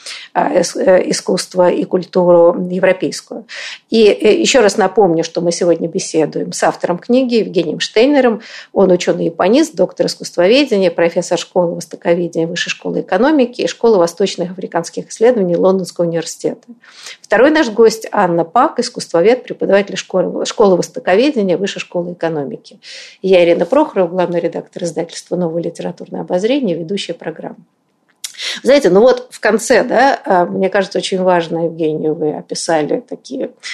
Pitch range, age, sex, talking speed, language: 170-205 Hz, 50-69, female, 130 wpm, Russian